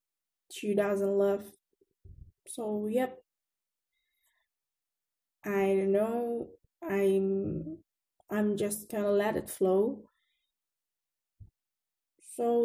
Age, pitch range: 10-29, 205-270 Hz